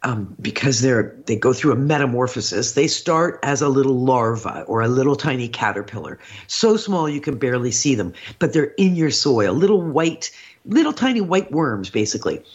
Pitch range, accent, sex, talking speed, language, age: 135-185 Hz, American, female, 180 wpm, English, 50-69